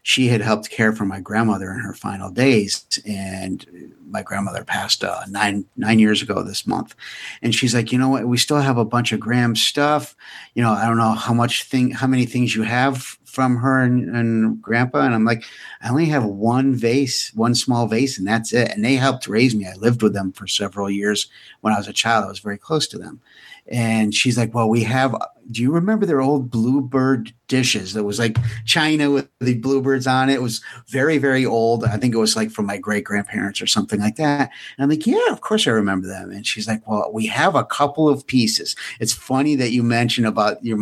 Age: 50-69